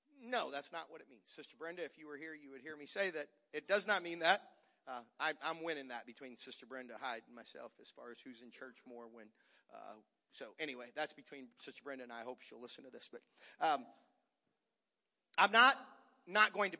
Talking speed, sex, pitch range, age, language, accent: 230 wpm, male, 130-200 Hz, 40-59, English, American